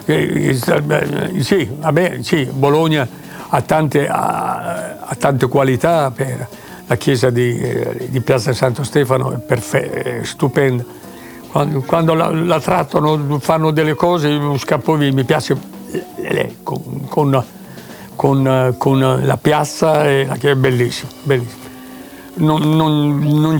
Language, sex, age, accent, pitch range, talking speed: Italian, male, 60-79, native, 130-160 Hz, 125 wpm